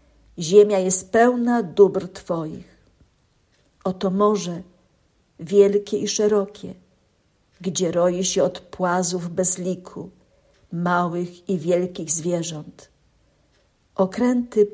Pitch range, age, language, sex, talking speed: 180-230 Hz, 50-69, Polish, female, 90 wpm